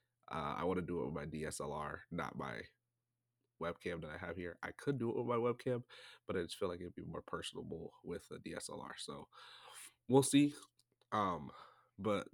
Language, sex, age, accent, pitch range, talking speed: English, male, 30-49, American, 95-120 Hz, 195 wpm